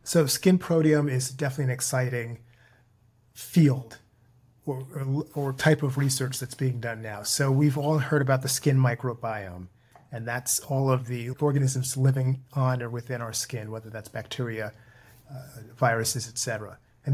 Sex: male